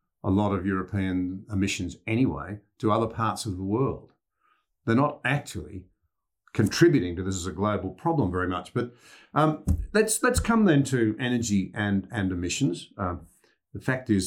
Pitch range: 95-115 Hz